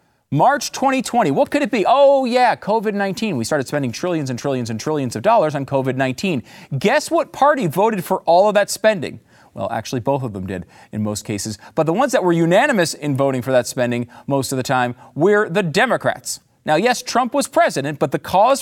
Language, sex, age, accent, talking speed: English, male, 40-59, American, 210 wpm